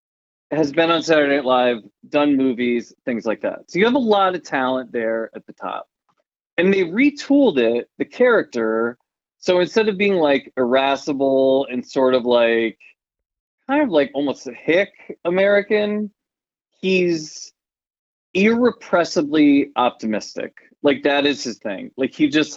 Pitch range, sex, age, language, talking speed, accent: 120-175 Hz, male, 20-39, English, 150 wpm, American